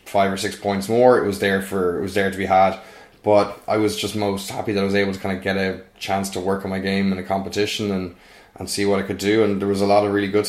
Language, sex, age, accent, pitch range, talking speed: English, male, 20-39, Irish, 95-105 Hz, 310 wpm